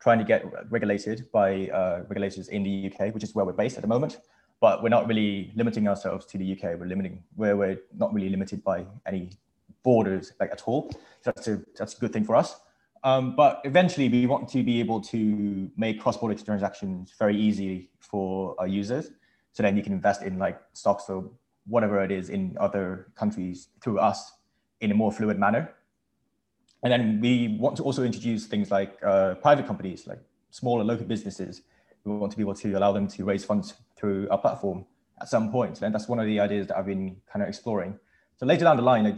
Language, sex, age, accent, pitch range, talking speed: English, male, 20-39, British, 95-115 Hz, 215 wpm